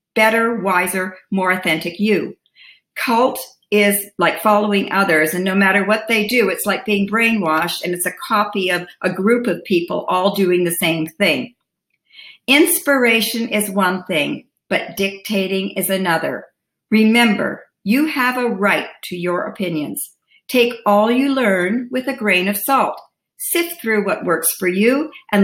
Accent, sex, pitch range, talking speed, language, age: American, female, 185-245 Hz, 155 wpm, English, 50-69